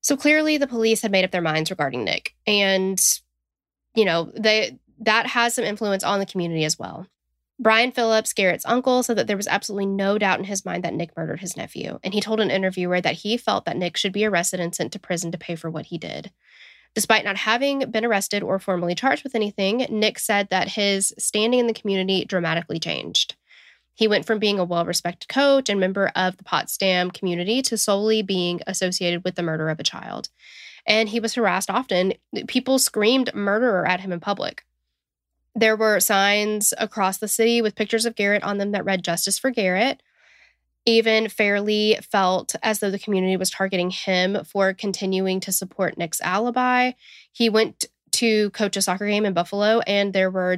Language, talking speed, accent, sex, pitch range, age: English, 195 wpm, American, female, 185-220 Hz, 10-29